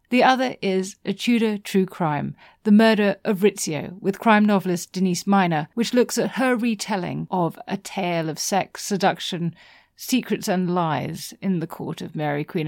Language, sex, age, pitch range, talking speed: English, female, 40-59, 175-220 Hz, 170 wpm